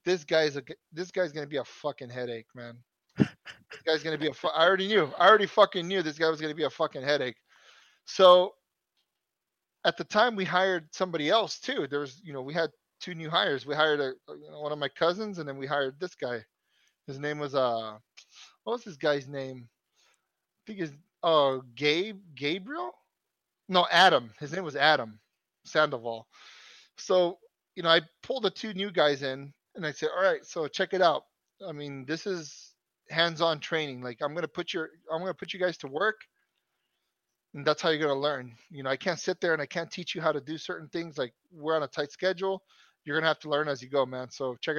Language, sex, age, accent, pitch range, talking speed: English, male, 30-49, American, 145-180 Hz, 225 wpm